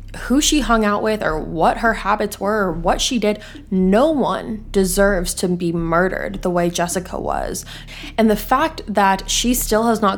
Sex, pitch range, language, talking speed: female, 180-220 Hz, English, 190 wpm